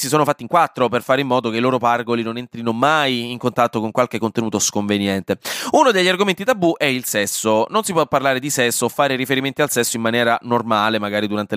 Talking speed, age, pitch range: 235 wpm, 20-39, 115-170 Hz